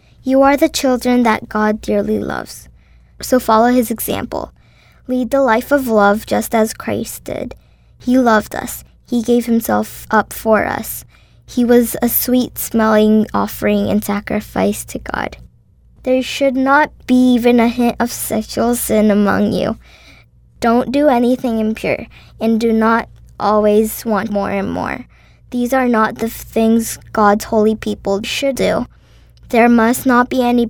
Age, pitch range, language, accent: 10-29, 215-245 Hz, Korean, American